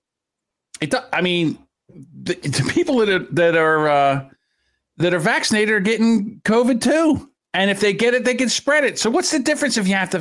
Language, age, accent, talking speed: English, 50-69, American, 200 wpm